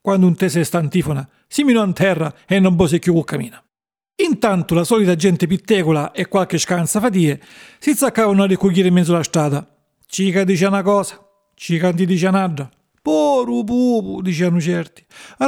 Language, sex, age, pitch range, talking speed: Italian, male, 50-69, 180-240 Hz, 165 wpm